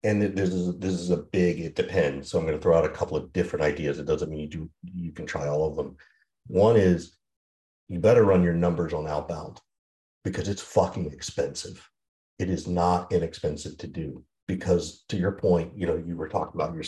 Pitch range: 75-95 Hz